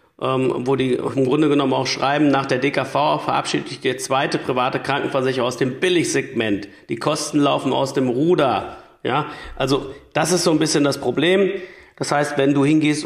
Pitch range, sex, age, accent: 130-150 Hz, male, 40-59, German